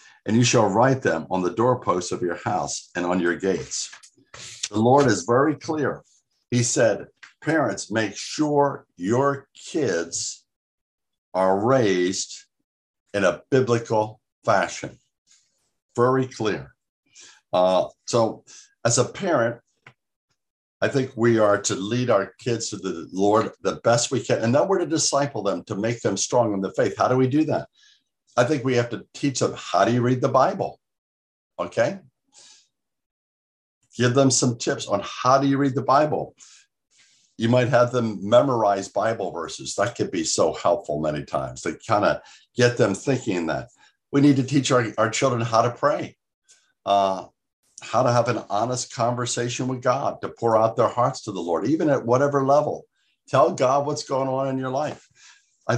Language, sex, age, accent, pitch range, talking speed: English, male, 60-79, American, 105-135 Hz, 170 wpm